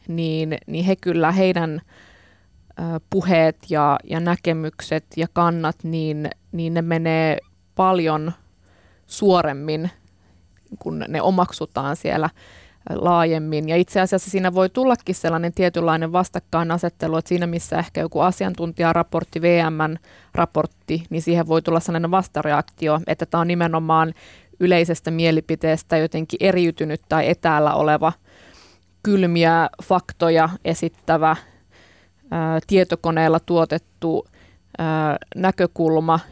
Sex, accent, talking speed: female, native, 105 wpm